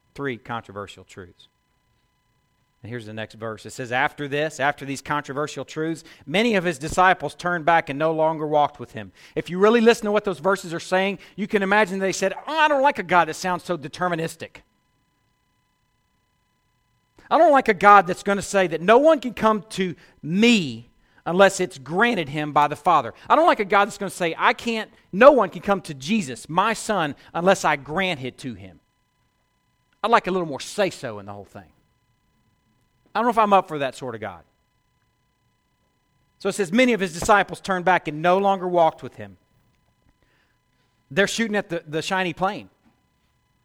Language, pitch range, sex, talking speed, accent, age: English, 140-195 Hz, male, 195 wpm, American, 40-59